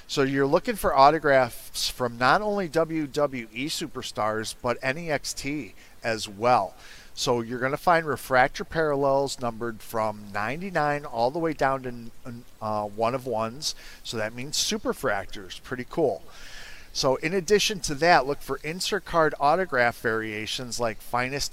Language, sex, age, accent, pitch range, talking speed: English, male, 40-59, American, 110-150 Hz, 150 wpm